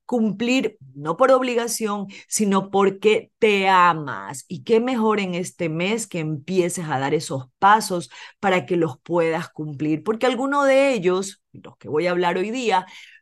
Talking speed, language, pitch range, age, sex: 165 wpm, Spanish, 160-225 Hz, 30-49, female